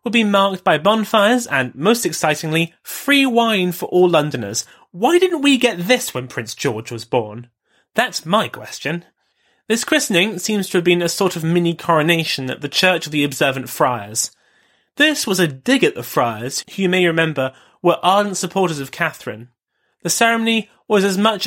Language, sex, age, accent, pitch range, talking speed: English, male, 30-49, British, 155-210 Hz, 180 wpm